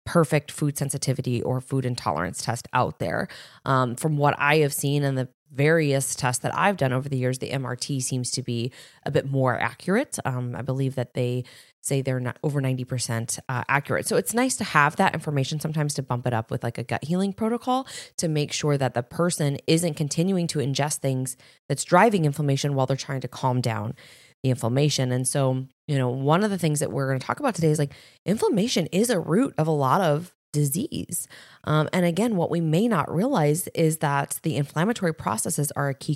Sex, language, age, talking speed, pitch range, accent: female, English, 20-39, 210 wpm, 130-165 Hz, American